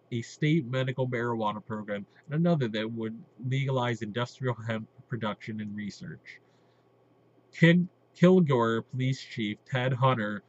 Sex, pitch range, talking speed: male, 115-135 Hz, 115 wpm